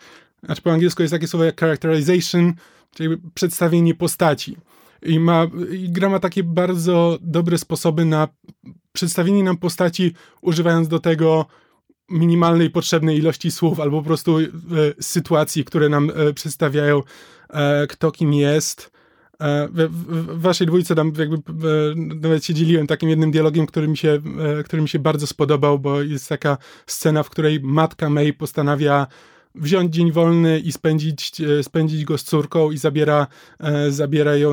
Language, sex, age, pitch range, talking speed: Polish, male, 20-39, 150-175 Hz, 135 wpm